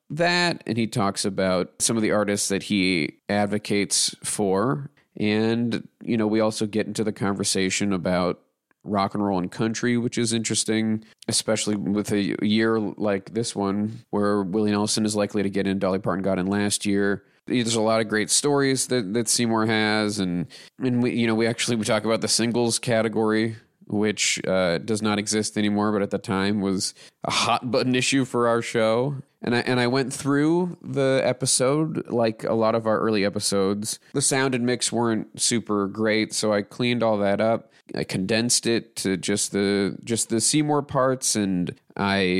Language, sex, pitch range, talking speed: English, male, 100-120 Hz, 190 wpm